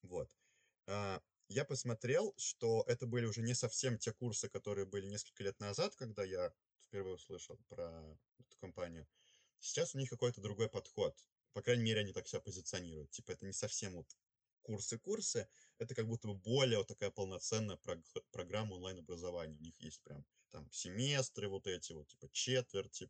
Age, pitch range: 20-39, 90-125 Hz